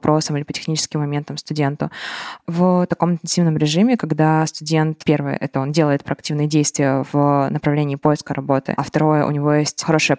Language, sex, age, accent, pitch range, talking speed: Russian, female, 20-39, native, 150-170 Hz, 160 wpm